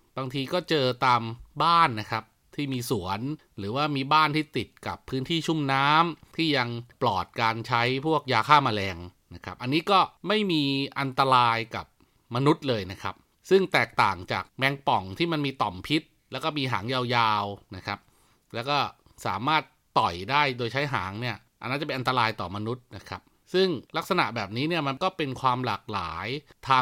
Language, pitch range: Thai, 115-150 Hz